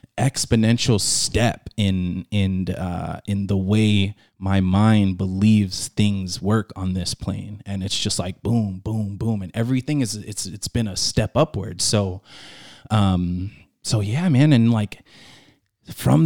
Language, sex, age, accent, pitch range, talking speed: English, male, 20-39, American, 100-125 Hz, 150 wpm